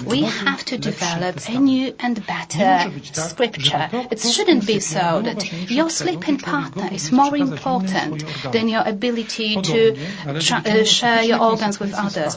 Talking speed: 150 wpm